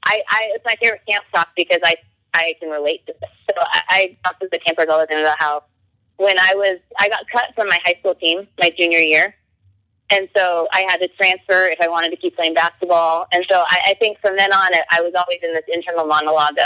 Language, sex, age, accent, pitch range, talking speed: English, female, 20-39, American, 155-195 Hz, 245 wpm